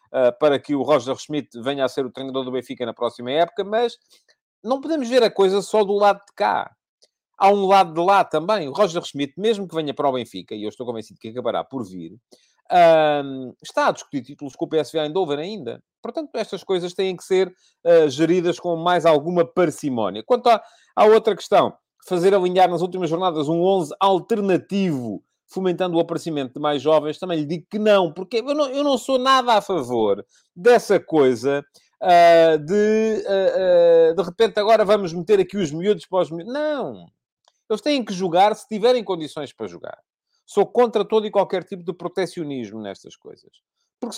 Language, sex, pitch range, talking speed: Portuguese, male, 155-220 Hz, 190 wpm